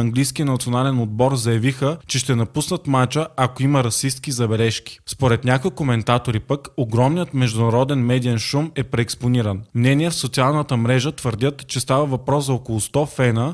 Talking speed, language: 150 wpm, Bulgarian